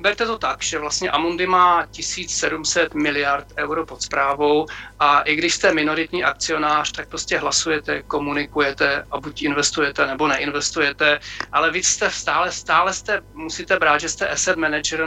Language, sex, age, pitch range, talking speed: Czech, male, 40-59, 150-165 Hz, 155 wpm